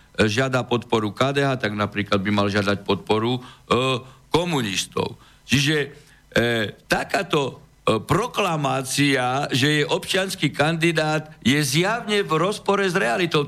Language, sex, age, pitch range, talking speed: Slovak, male, 60-79, 135-175 Hz, 115 wpm